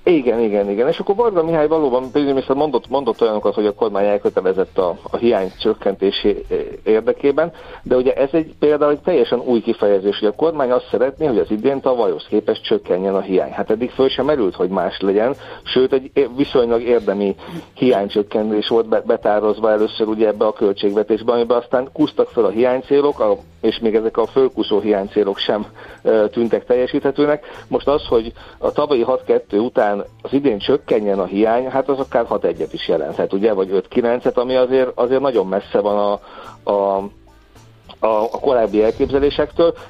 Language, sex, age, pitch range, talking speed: Hungarian, male, 50-69, 110-150 Hz, 165 wpm